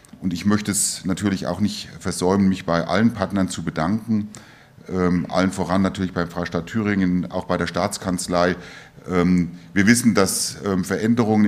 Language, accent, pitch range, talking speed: German, German, 90-105 Hz, 160 wpm